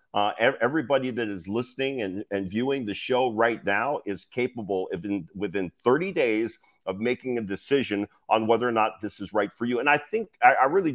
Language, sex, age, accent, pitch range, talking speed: English, male, 50-69, American, 105-140 Hz, 210 wpm